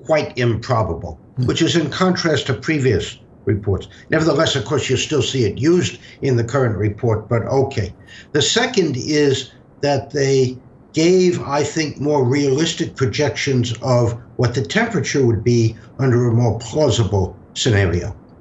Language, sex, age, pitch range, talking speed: English, male, 60-79, 110-145 Hz, 145 wpm